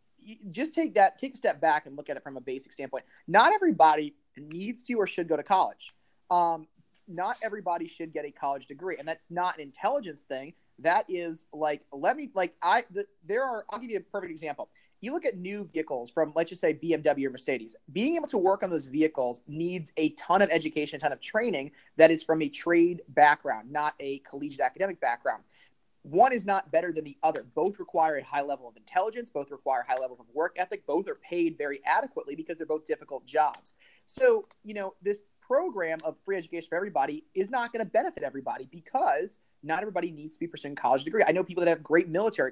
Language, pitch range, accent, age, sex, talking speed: English, 150-210 Hz, American, 30-49, male, 220 wpm